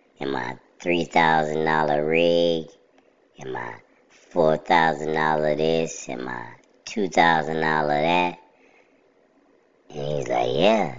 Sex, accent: male, American